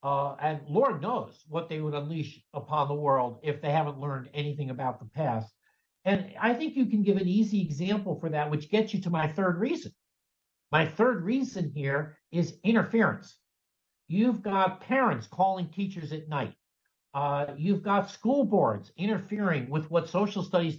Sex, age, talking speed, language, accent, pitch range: male, 60-79, 175 wpm, English, American, 145-190 Hz